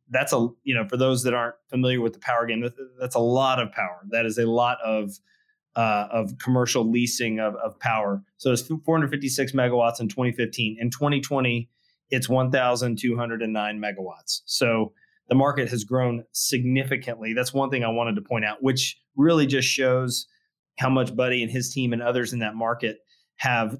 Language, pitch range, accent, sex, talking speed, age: English, 115-130 Hz, American, male, 180 wpm, 30-49